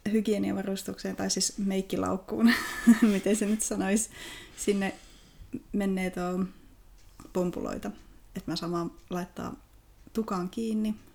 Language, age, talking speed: Finnish, 20-39, 95 wpm